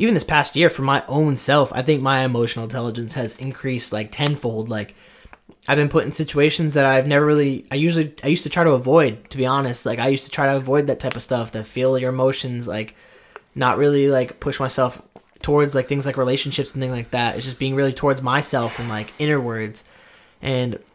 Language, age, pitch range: English, 20-39, 120-150 Hz